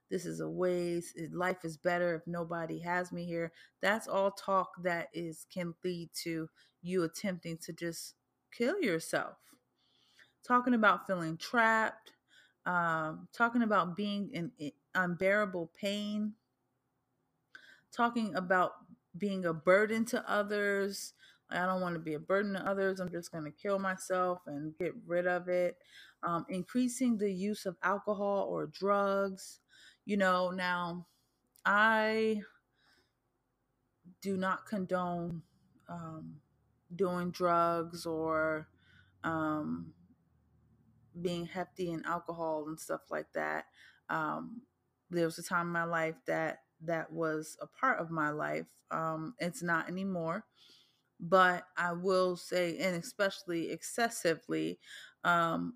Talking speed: 130 wpm